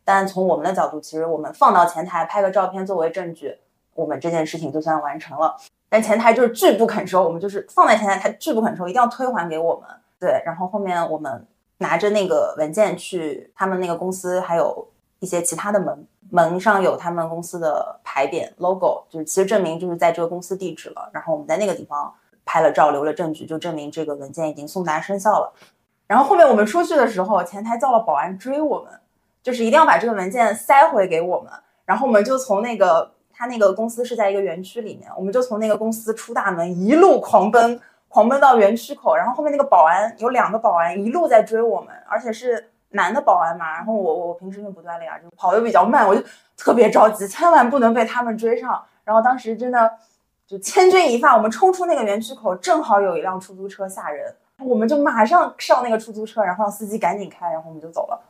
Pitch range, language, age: 175-235 Hz, Chinese, 20-39